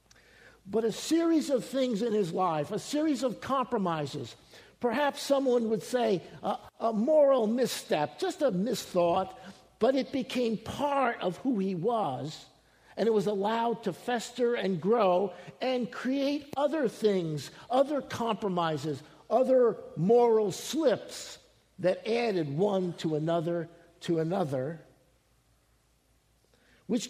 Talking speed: 125 wpm